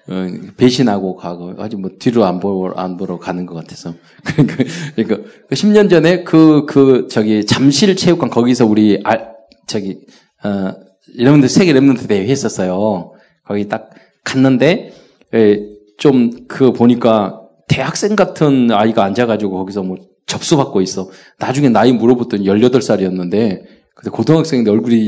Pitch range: 95-135 Hz